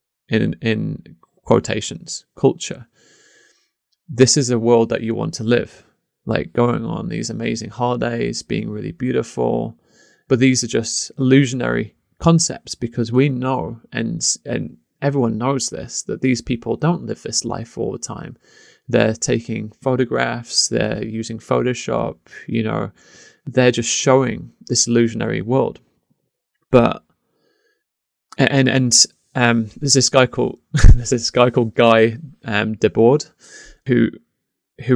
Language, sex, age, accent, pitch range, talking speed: English, male, 20-39, British, 115-130 Hz, 130 wpm